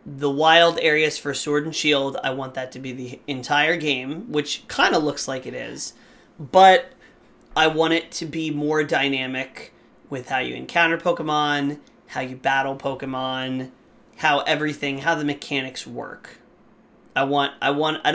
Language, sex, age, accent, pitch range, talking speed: English, male, 30-49, American, 135-165 Hz, 165 wpm